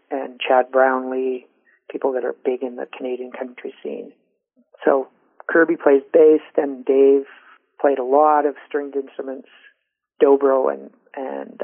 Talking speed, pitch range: 135 wpm, 135-165 Hz